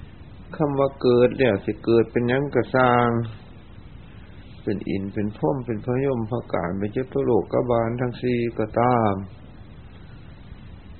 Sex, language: male, Thai